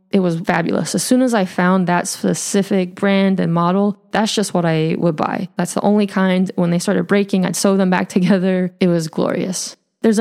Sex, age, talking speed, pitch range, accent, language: female, 20-39, 210 wpm, 185-220 Hz, American, English